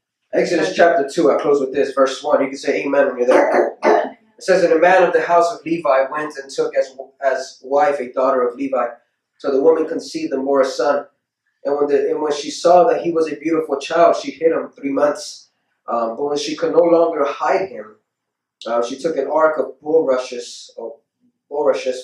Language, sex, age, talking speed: English, male, 20-39, 220 wpm